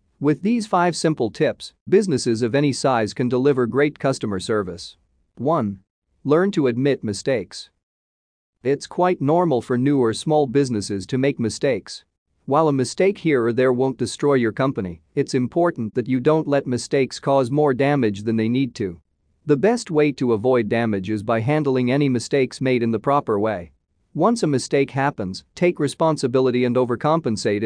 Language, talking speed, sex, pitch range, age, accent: English, 170 wpm, male, 110-150 Hz, 40-59, American